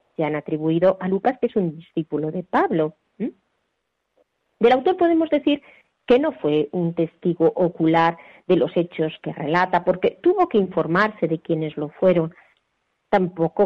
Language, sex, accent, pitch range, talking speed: Spanish, female, Spanish, 165-235 Hz, 155 wpm